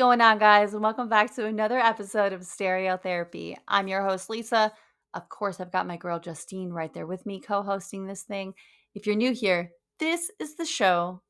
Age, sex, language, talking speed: 20-39, female, English, 205 wpm